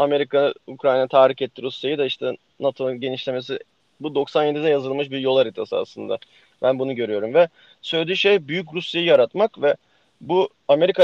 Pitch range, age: 135-185 Hz, 40-59